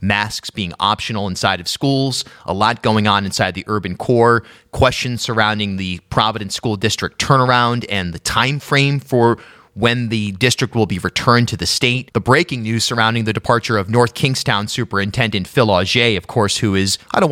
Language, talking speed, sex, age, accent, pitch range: English, 185 wpm, male, 30-49, American, 100-130 Hz